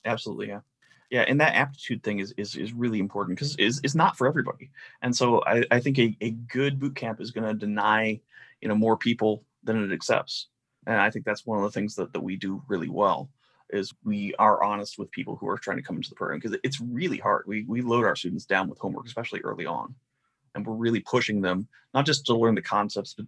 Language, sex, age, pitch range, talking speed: English, male, 30-49, 110-140 Hz, 240 wpm